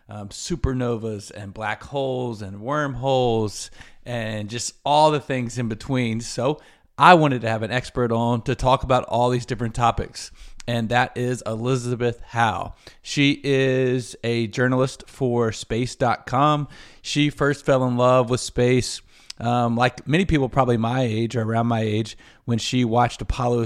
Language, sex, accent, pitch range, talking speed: English, male, American, 115-130 Hz, 155 wpm